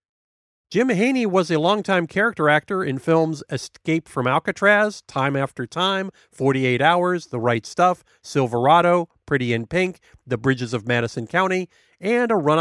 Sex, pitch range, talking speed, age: male, 130-185 Hz, 150 wpm, 40-59